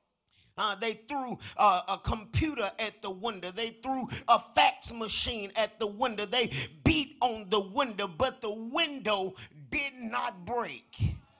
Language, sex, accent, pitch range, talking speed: English, male, American, 225-295 Hz, 145 wpm